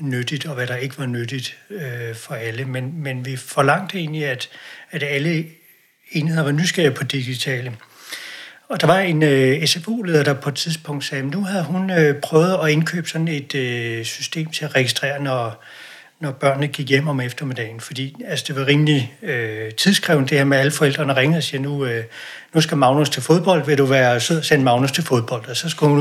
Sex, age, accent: male, 60-79, native